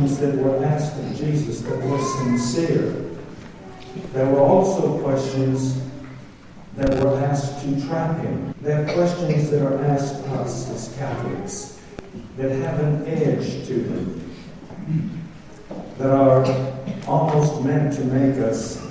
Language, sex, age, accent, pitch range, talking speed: English, male, 50-69, American, 130-155 Hz, 130 wpm